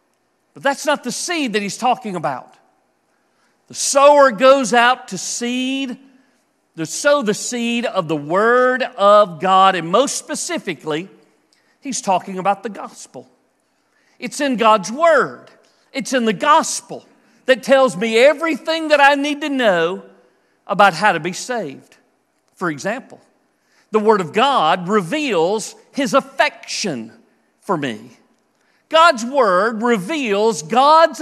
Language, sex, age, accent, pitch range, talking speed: English, male, 50-69, American, 200-280 Hz, 135 wpm